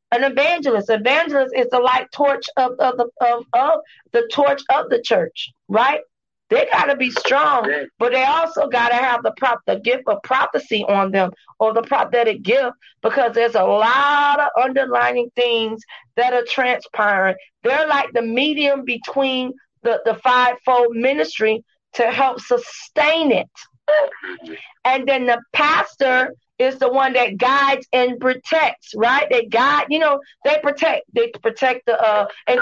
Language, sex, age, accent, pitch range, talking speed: English, female, 40-59, American, 240-300 Hz, 160 wpm